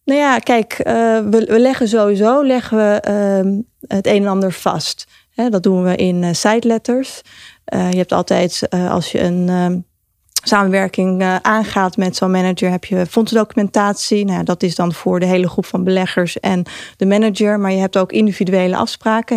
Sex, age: female, 30-49